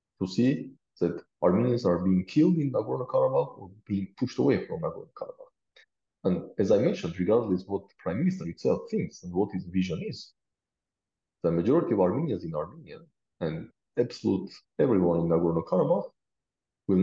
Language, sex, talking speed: English, male, 155 wpm